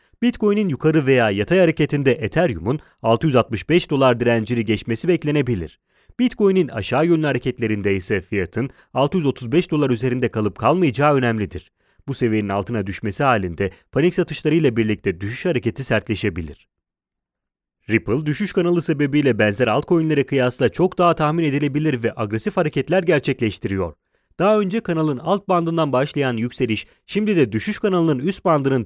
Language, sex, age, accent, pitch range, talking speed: English, male, 30-49, Turkish, 115-175 Hz, 130 wpm